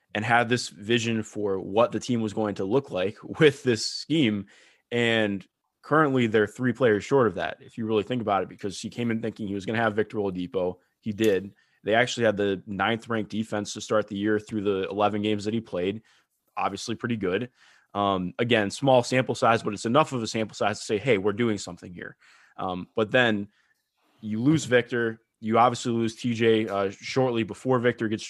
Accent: American